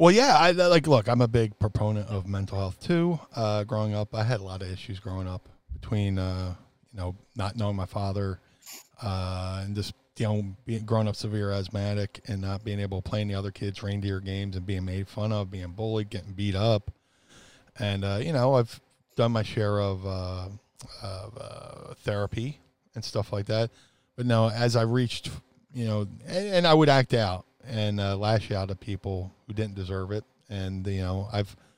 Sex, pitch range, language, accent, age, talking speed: male, 100-125 Hz, English, American, 40-59, 200 wpm